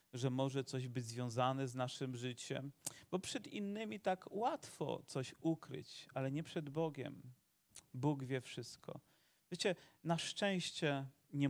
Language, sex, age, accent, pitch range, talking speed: Polish, male, 40-59, native, 135-175 Hz, 135 wpm